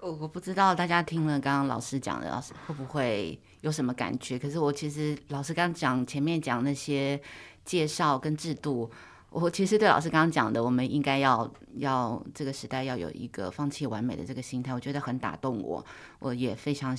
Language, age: Chinese, 20-39